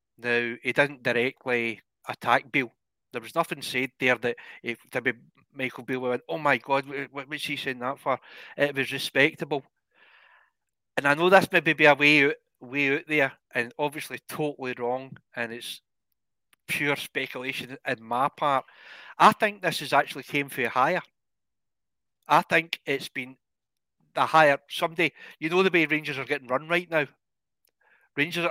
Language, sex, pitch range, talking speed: English, male, 130-160 Hz, 165 wpm